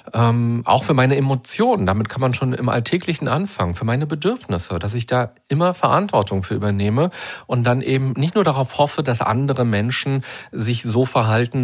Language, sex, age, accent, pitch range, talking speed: German, male, 40-59, German, 110-135 Hz, 180 wpm